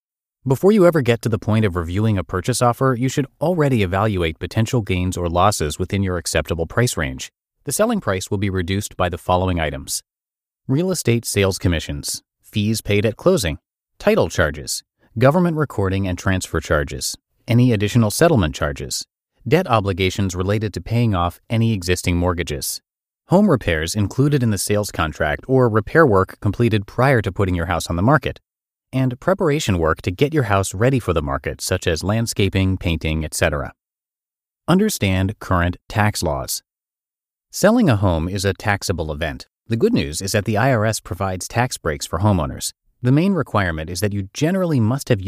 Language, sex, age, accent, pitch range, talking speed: English, male, 30-49, American, 90-120 Hz, 170 wpm